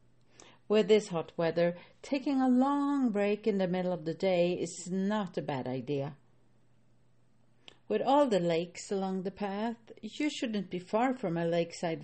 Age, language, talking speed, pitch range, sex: 50-69, English, 165 wpm, 160-230 Hz, female